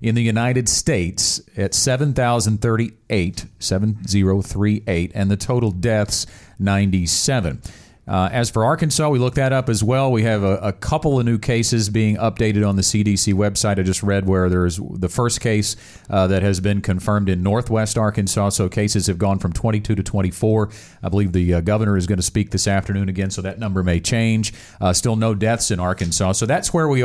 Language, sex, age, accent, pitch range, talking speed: English, male, 40-59, American, 100-120 Hz, 195 wpm